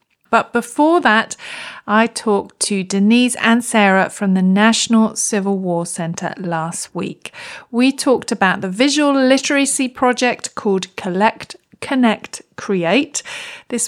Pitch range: 190-240 Hz